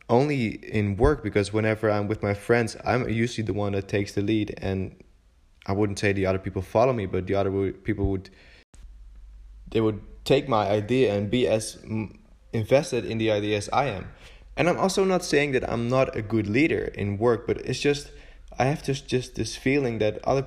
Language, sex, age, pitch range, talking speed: English, male, 20-39, 100-120 Hz, 205 wpm